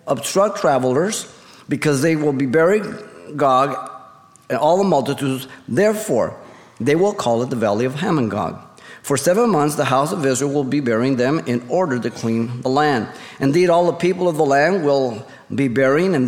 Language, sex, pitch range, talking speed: English, male, 120-155 Hz, 185 wpm